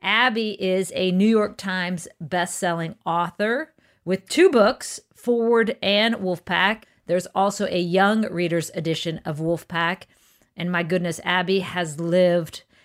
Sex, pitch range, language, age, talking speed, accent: female, 180-250 Hz, English, 40-59, 130 wpm, American